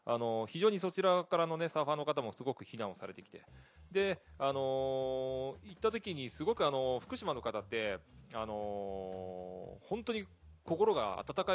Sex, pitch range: male, 110-155 Hz